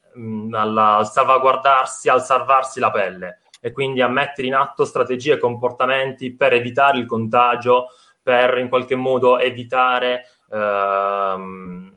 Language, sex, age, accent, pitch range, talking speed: Italian, male, 20-39, native, 115-145 Hz, 130 wpm